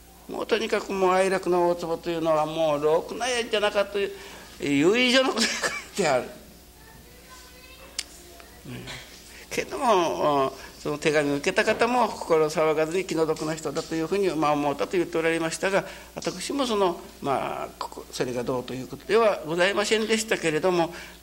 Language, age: Japanese, 60-79